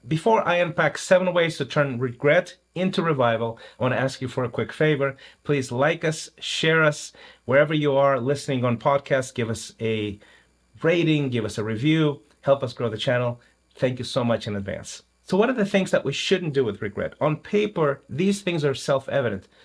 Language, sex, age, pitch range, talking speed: English, male, 30-49, 115-155 Hz, 200 wpm